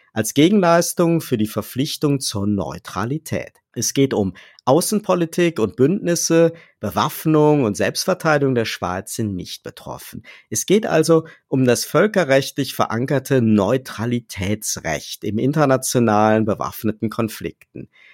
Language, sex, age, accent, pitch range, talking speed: German, male, 50-69, German, 105-145 Hz, 110 wpm